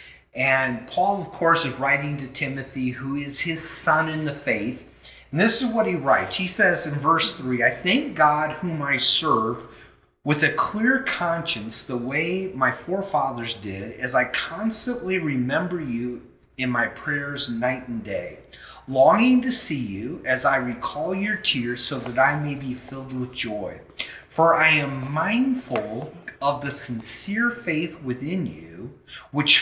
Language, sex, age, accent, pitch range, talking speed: English, male, 30-49, American, 125-175 Hz, 160 wpm